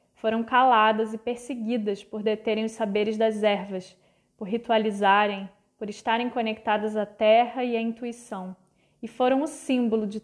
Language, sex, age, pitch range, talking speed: Portuguese, female, 20-39, 210-240 Hz, 145 wpm